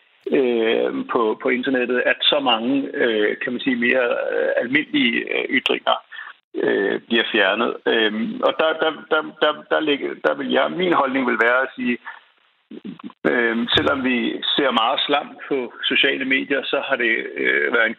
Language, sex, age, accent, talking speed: Danish, male, 60-79, native, 125 wpm